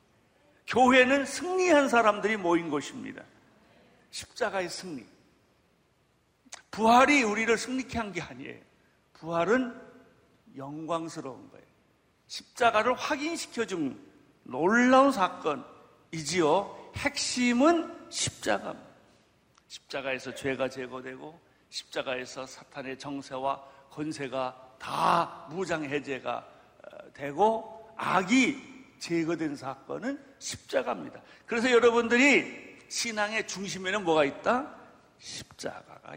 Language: Korean